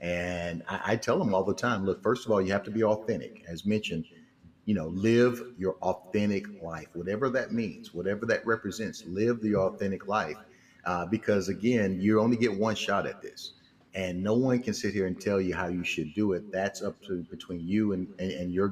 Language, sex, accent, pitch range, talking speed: English, male, American, 95-110 Hz, 220 wpm